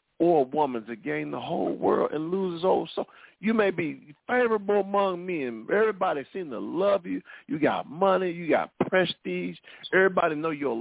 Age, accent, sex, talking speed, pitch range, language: 50-69, American, male, 185 wpm, 125-185 Hz, English